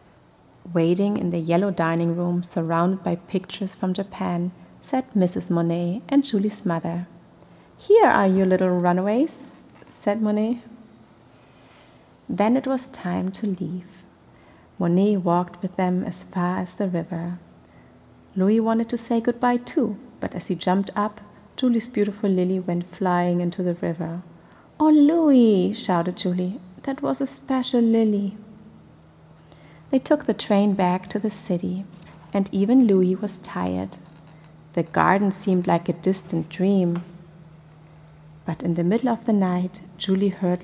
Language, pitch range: English, 175-210 Hz